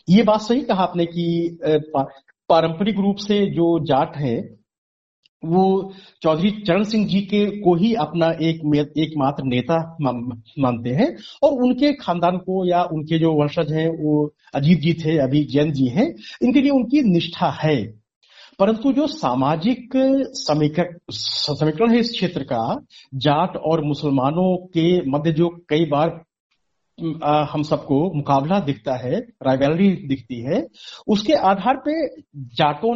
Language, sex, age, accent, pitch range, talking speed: Hindi, male, 50-69, native, 150-205 Hz, 135 wpm